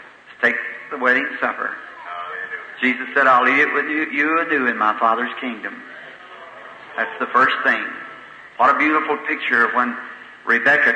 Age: 50-69